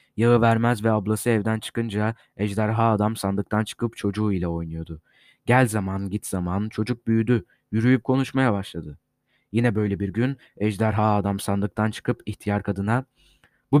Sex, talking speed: male, 140 wpm